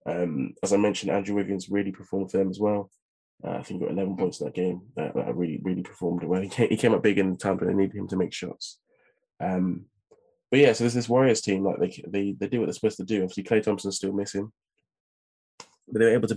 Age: 20-39